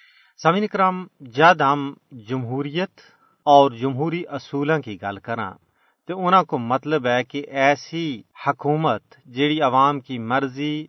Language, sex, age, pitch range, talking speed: Urdu, male, 40-59, 120-150 Hz, 125 wpm